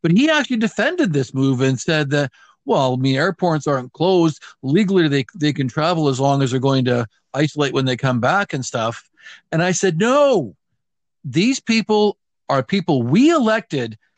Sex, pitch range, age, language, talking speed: male, 135-185 Hz, 50-69, English, 180 wpm